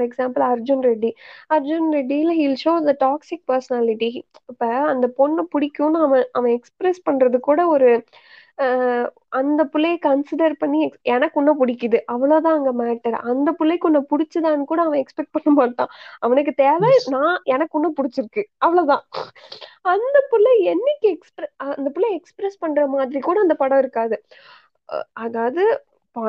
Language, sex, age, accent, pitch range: Tamil, female, 20-39, native, 260-335 Hz